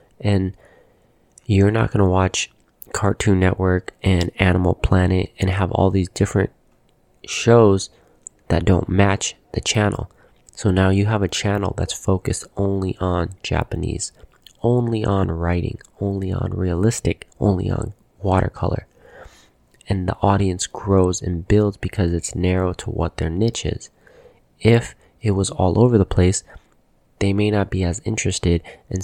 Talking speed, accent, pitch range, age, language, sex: 145 wpm, American, 90-105 Hz, 30-49, English, male